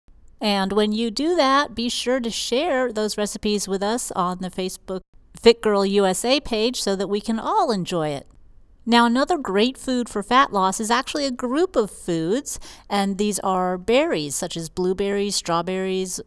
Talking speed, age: 175 wpm, 40-59